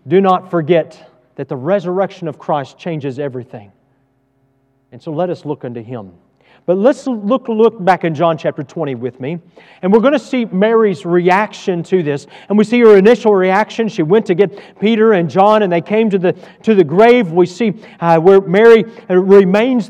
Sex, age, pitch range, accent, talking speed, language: male, 40-59, 160-205 Hz, American, 195 wpm, English